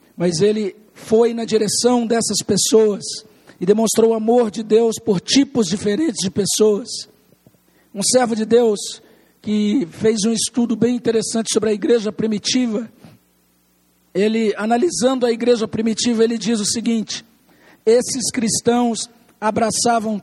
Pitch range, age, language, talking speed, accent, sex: 210-235 Hz, 60-79, Portuguese, 130 wpm, Brazilian, male